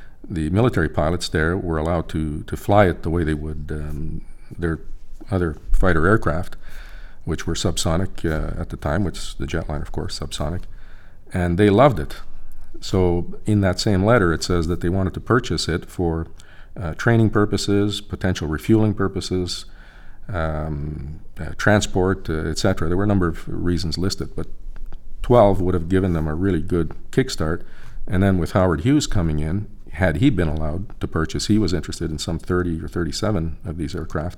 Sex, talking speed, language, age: male, 180 wpm, English, 50-69